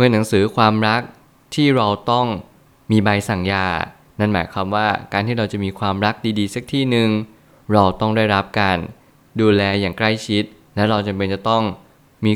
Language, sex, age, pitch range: Thai, male, 20-39, 100-120 Hz